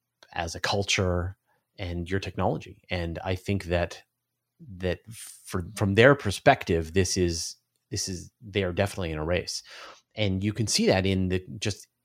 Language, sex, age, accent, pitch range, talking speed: English, male, 30-49, American, 90-110 Hz, 165 wpm